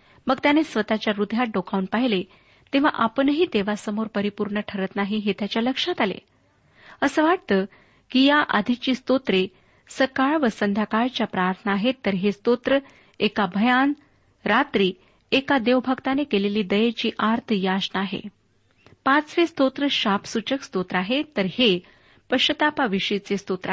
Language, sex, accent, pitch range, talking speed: Marathi, female, native, 205-265 Hz, 115 wpm